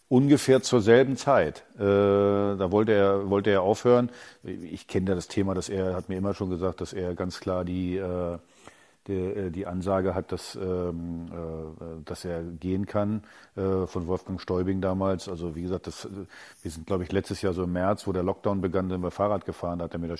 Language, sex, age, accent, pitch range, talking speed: German, male, 50-69, German, 90-105 Hz, 195 wpm